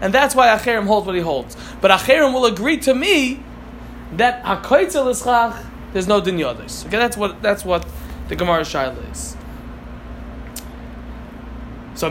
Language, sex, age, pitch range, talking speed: Malay, male, 20-39, 170-255 Hz, 150 wpm